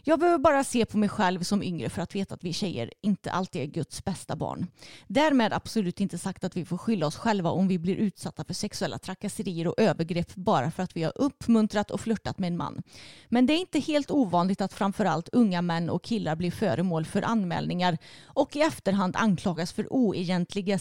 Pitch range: 175-235 Hz